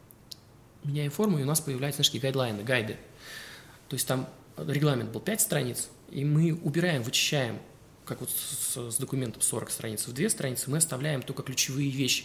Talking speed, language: 165 wpm, Russian